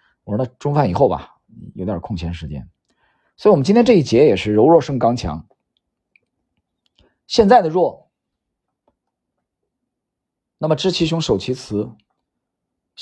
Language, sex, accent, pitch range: Chinese, male, native, 100-145 Hz